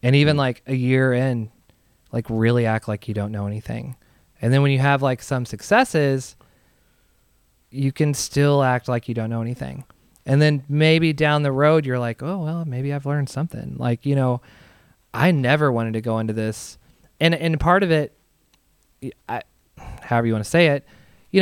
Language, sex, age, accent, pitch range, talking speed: English, male, 20-39, American, 115-145 Hz, 190 wpm